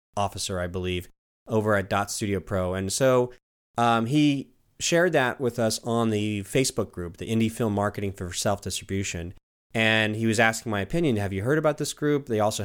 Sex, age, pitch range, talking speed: male, 30-49, 100-120 Hz, 190 wpm